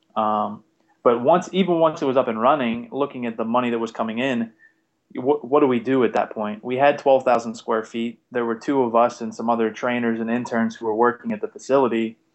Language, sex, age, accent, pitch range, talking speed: English, male, 20-39, American, 110-125 Hz, 230 wpm